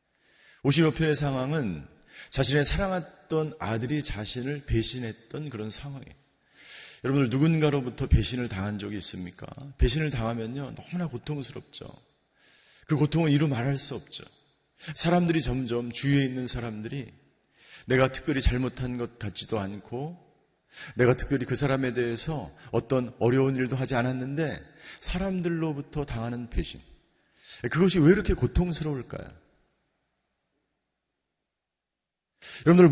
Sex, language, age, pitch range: male, Korean, 40-59, 120-155 Hz